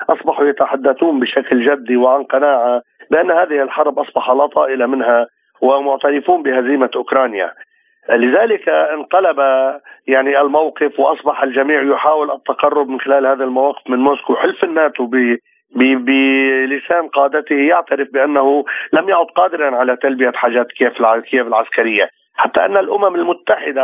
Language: Arabic